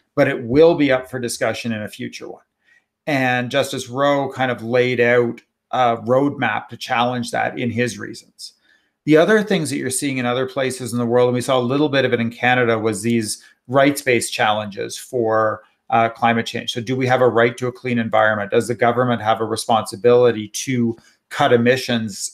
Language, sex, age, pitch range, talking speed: English, male, 40-59, 120-135 Hz, 200 wpm